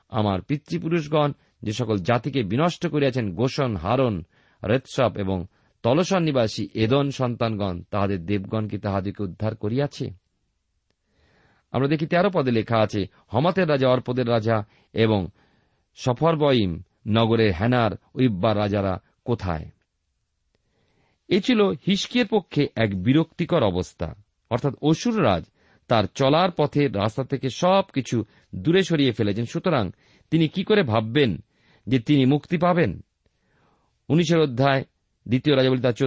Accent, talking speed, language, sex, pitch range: native, 115 wpm, Bengali, male, 105-145 Hz